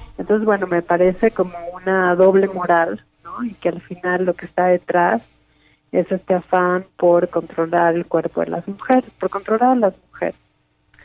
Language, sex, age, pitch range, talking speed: Spanish, female, 30-49, 170-190 Hz, 175 wpm